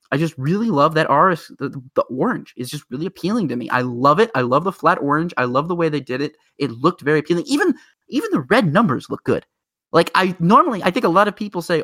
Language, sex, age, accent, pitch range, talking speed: English, male, 20-39, American, 135-180 Hz, 260 wpm